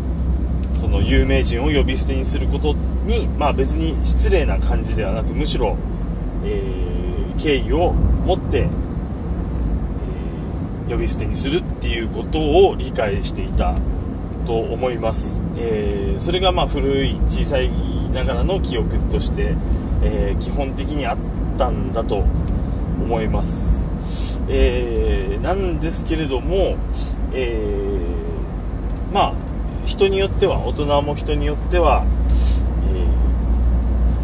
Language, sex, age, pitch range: Japanese, male, 30-49, 65-90 Hz